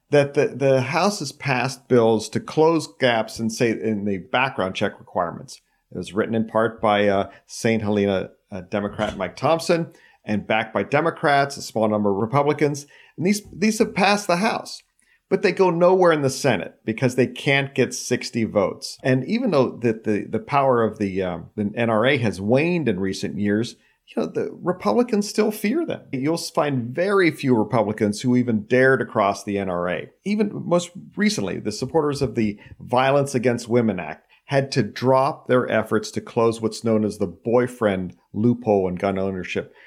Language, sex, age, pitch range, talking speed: English, male, 40-59, 105-140 Hz, 185 wpm